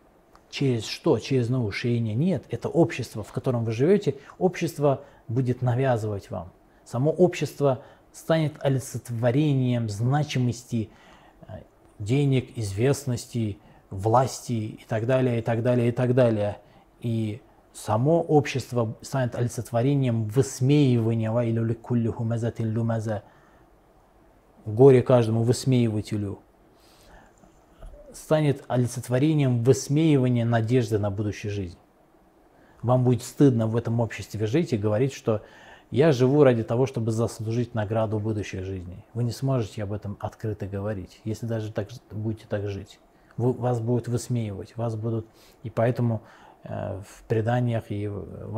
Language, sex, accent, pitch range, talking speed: Russian, male, native, 110-130 Hz, 115 wpm